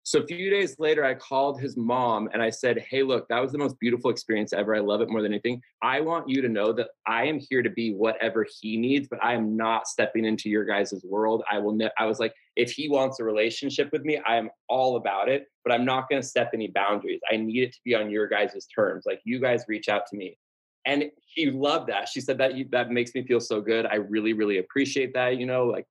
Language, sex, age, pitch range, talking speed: English, male, 20-39, 110-140 Hz, 260 wpm